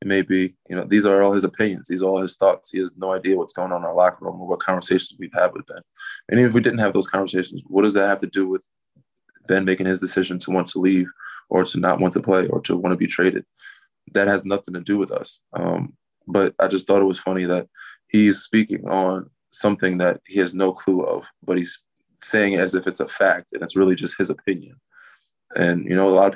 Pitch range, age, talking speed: 95-100 Hz, 20-39, 260 wpm